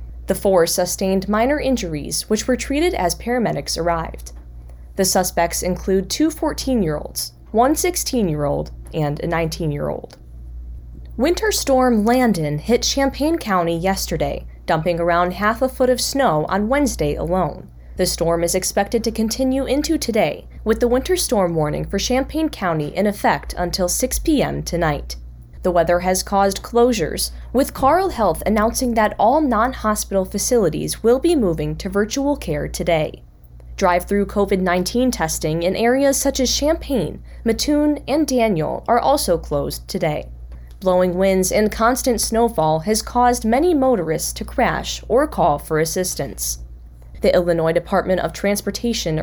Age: 10-29